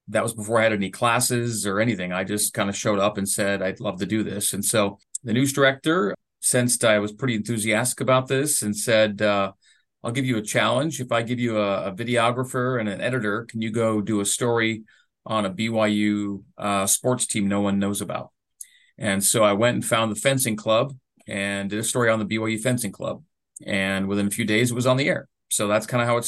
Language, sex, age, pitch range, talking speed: English, male, 40-59, 105-125 Hz, 235 wpm